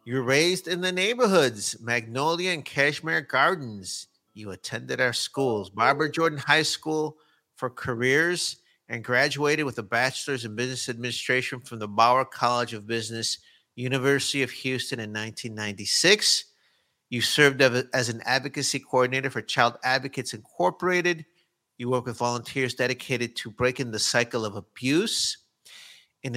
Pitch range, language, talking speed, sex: 115-140 Hz, English, 135 wpm, male